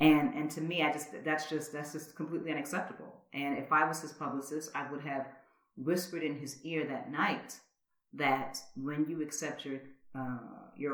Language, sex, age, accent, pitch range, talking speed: English, female, 40-59, American, 150-180 Hz, 185 wpm